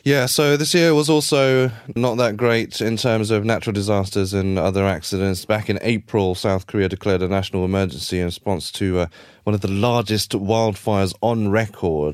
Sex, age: male, 30-49